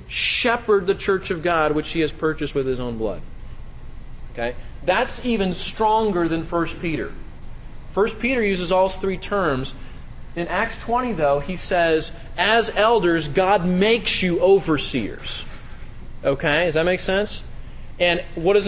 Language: English